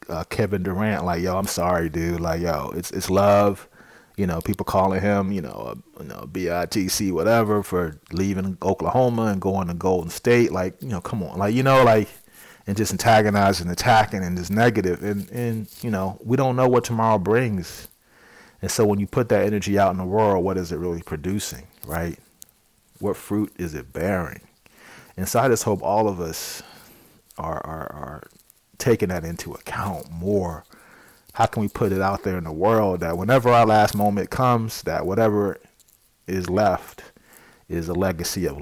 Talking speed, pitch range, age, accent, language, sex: 185 wpm, 90-105 Hz, 30-49, American, English, male